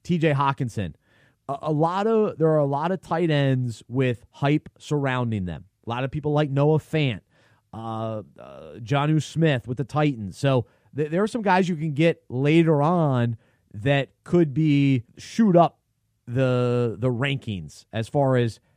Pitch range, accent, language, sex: 115-145 Hz, American, English, male